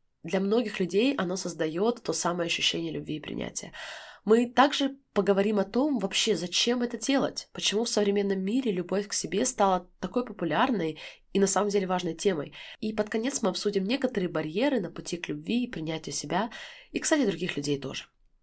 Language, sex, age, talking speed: Russian, female, 20-39, 180 wpm